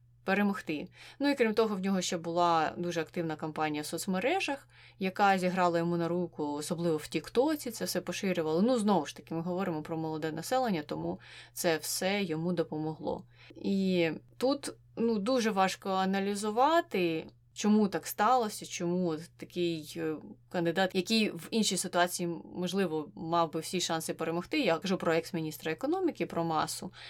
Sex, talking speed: female, 150 wpm